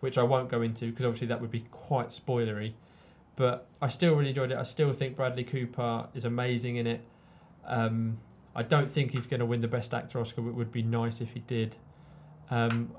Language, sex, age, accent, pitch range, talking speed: English, male, 20-39, British, 115-130 Hz, 220 wpm